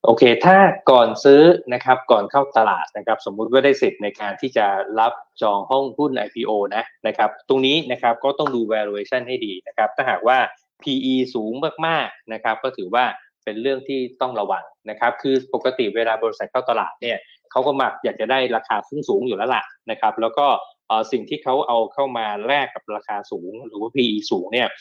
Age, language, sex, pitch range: 20-39, Thai, male, 115-140 Hz